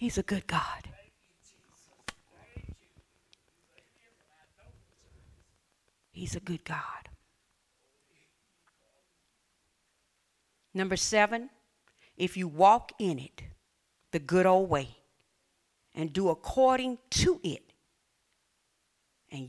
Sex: female